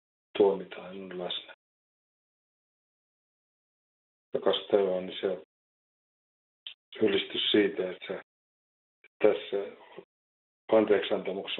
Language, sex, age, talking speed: Finnish, male, 50-69, 55 wpm